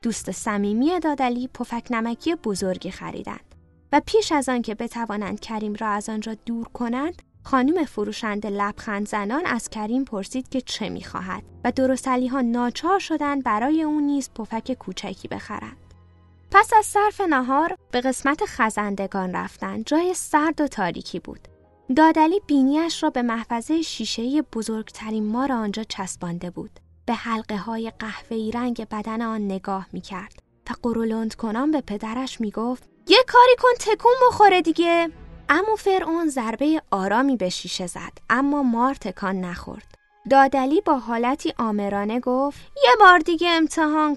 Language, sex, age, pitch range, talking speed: Persian, female, 10-29, 210-300 Hz, 145 wpm